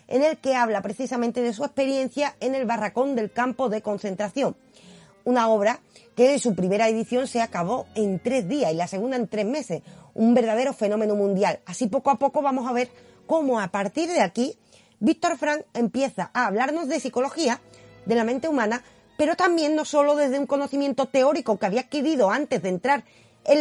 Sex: female